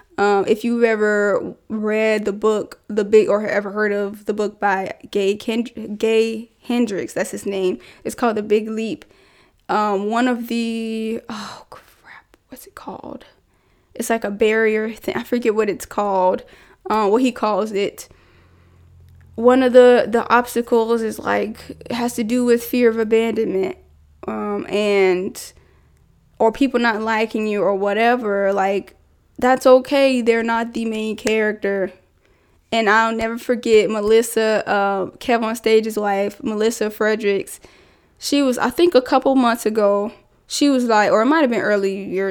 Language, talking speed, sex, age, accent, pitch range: English, 160 wpm, female, 10-29, American, 205-235 Hz